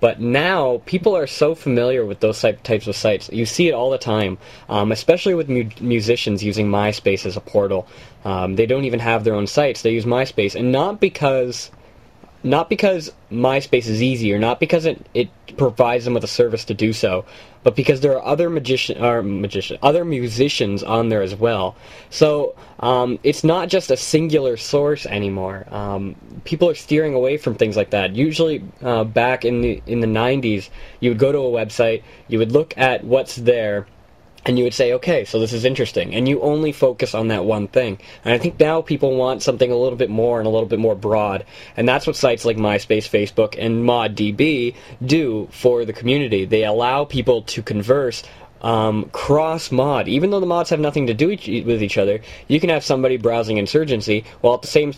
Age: 20-39